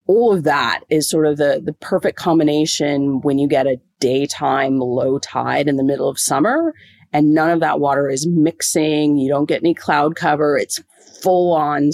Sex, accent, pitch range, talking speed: female, American, 145-185 Hz, 190 wpm